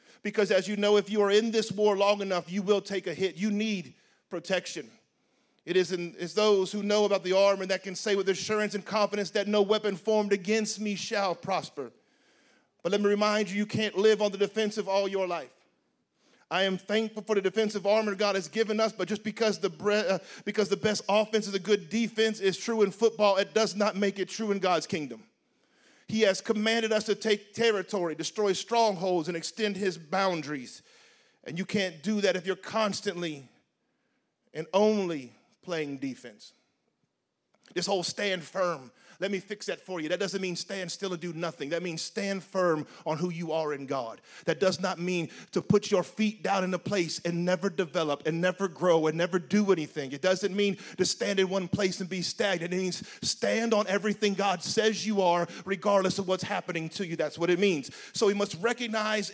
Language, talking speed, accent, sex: English, 210 wpm, American, male